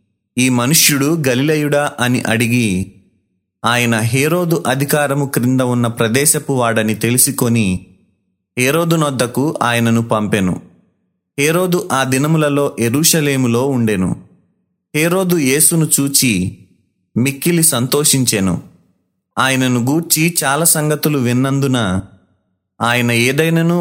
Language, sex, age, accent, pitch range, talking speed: Telugu, male, 30-49, native, 115-150 Hz, 85 wpm